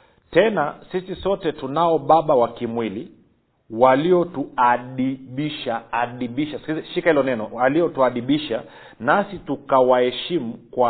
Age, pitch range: 50-69, 125-160 Hz